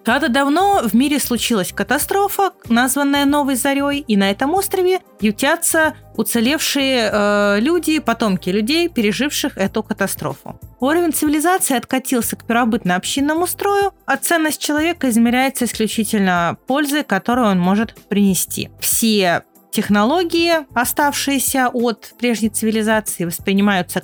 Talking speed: 110 wpm